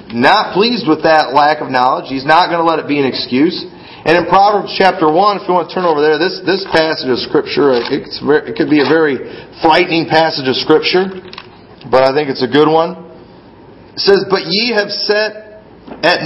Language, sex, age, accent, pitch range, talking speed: English, male, 40-59, American, 155-200 Hz, 205 wpm